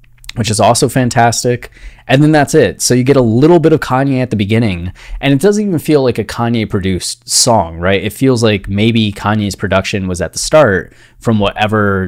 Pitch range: 95-120 Hz